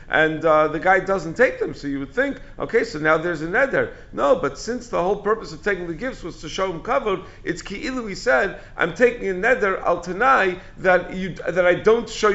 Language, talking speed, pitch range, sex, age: English, 235 wpm, 140-200 Hz, male, 50-69